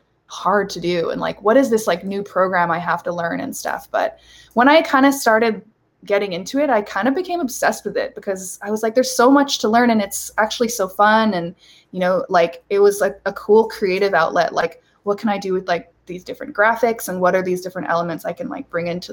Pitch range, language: 180-230 Hz, English